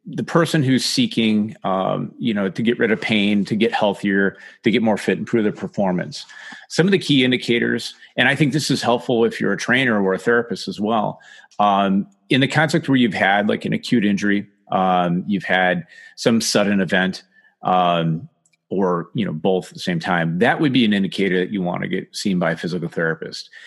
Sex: male